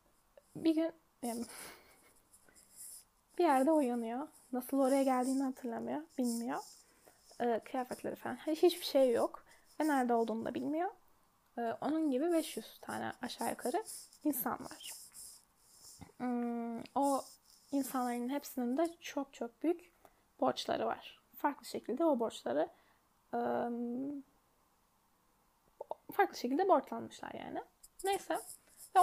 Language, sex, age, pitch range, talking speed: Turkish, female, 10-29, 245-310 Hz, 95 wpm